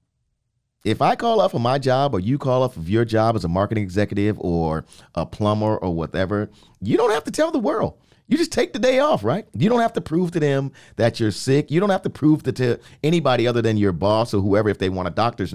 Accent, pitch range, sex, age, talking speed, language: American, 95-135 Hz, male, 40-59, 250 wpm, English